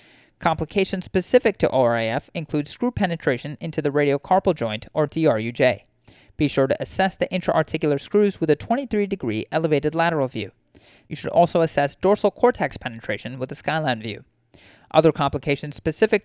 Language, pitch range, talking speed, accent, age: English, 130-175 Hz, 150 wpm, American, 30-49